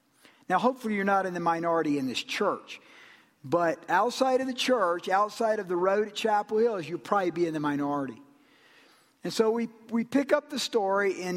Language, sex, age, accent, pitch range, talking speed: English, male, 50-69, American, 190-245 Hz, 195 wpm